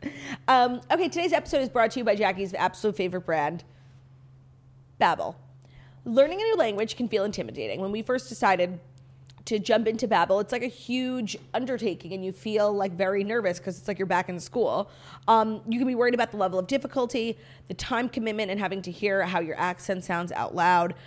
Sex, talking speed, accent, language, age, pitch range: female, 200 wpm, American, English, 30-49, 170-230 Hz